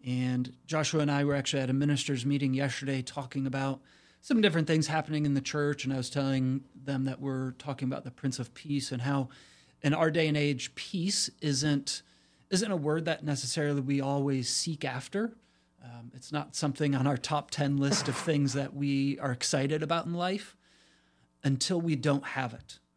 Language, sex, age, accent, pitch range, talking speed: English, male, 30-49, American, 125-150 Hz, 195 wpm